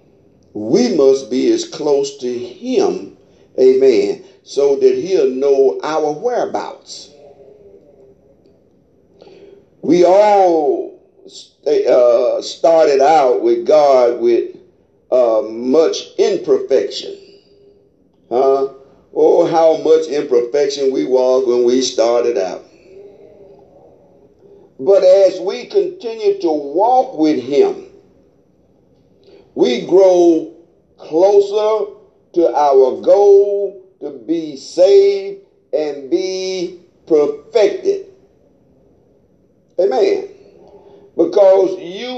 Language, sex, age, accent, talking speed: English, male, 50-69, American, 85 wpm